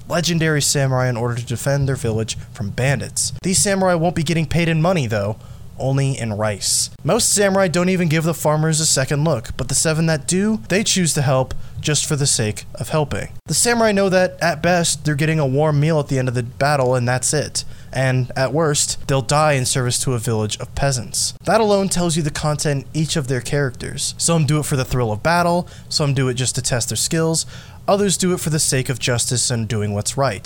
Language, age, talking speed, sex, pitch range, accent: English, 20-39, 230 wpm, male, 120-160 Hz, American